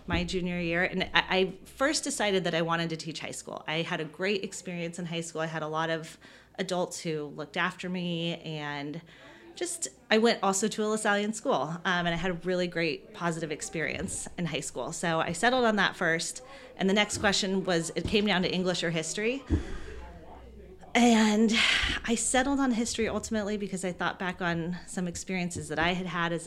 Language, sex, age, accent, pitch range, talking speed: English, female, 30-49, American, 165-205 Hz, 200 wpm